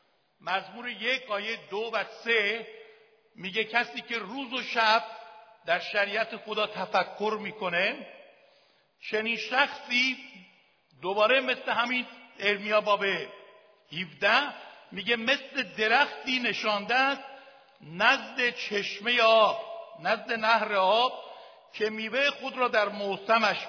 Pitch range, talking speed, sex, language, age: 190-240 Hz, 100 wpm, male, Persian, 60-79